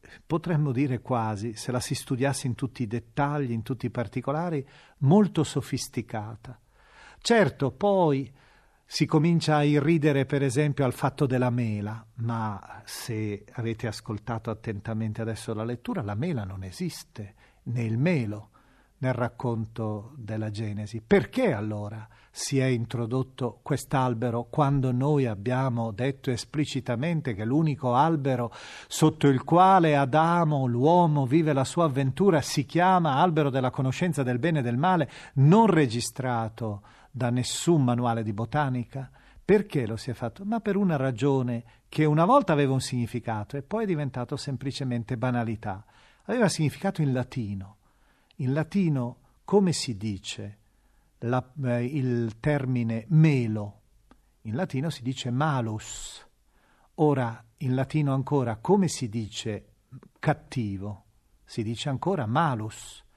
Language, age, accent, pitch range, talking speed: Italian, 40-59, native, 115-150 Hz, 130 wpm